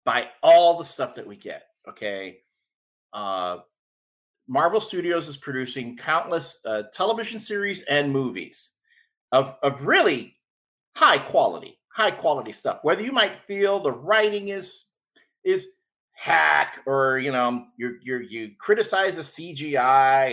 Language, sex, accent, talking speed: English, male, American, 135 wpm